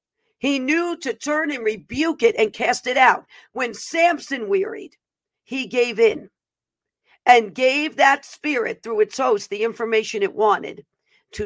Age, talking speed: 50-69, 150 wpm